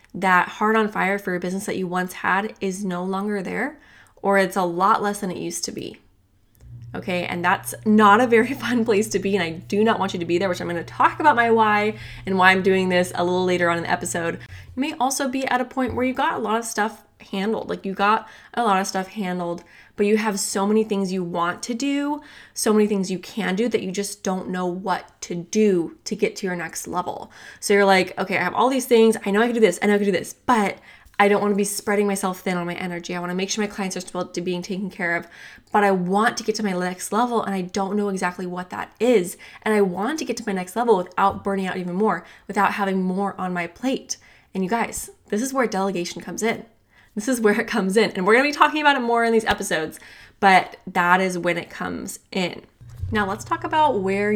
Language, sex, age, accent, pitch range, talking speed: English, female, 20-39, American, 180-220 Hz, 265 wpm